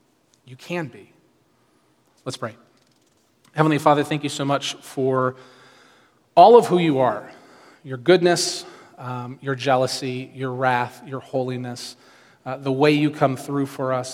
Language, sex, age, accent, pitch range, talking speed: English, male, 30-49, American, 130-150 Hz, 145 wpm